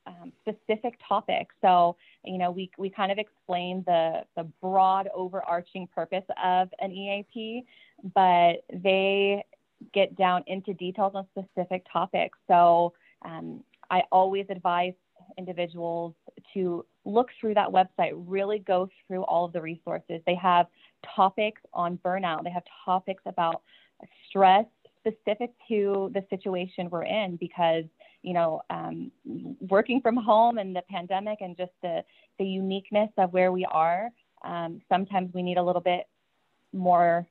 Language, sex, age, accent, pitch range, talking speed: English, female, 20-39, American, 175-200 Hz, 145 wpm